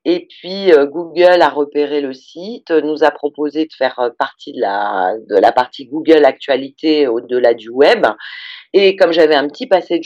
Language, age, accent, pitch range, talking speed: French, 40-59, French, 140-180 Hz, 185 wpm